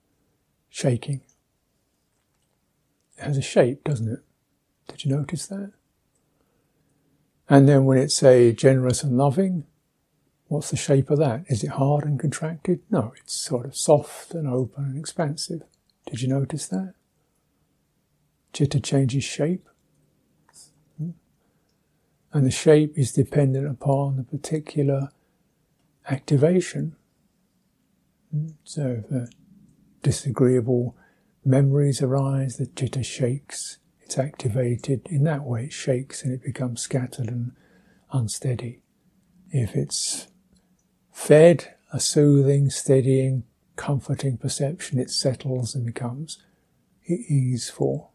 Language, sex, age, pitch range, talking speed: English, male, 60-79, 130-155 Hz, 115 wpm